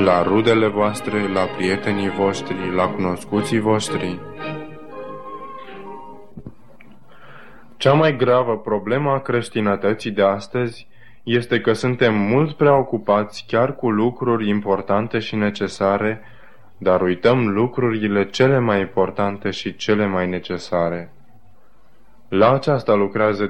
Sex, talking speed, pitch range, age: male, 105 wpm, 95-115 Hz, 20-39